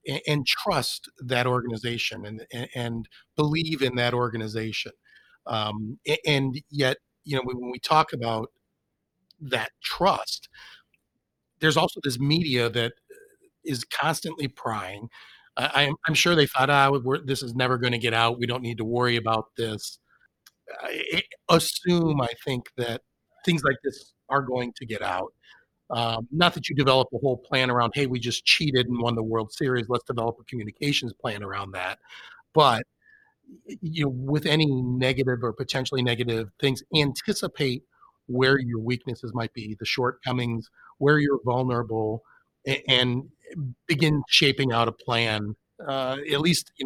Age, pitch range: 40-59, 115-145 Hz